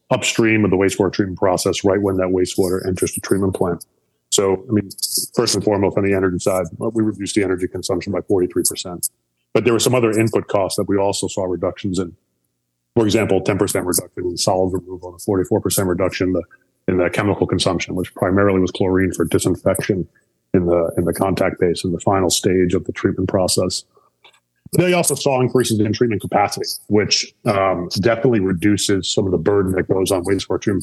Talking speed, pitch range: 200 wpm, 90-105 Hz